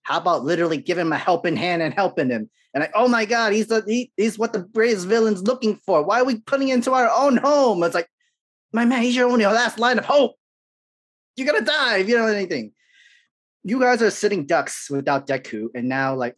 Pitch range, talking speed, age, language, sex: 130-185 Hz, 235 wpm, 30-49, English, male